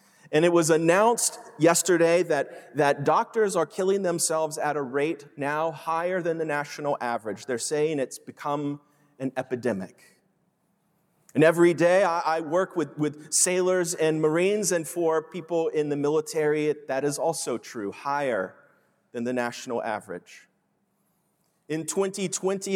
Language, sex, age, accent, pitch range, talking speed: English, male, 30-49, American, 145-180 Hz, 140 wpm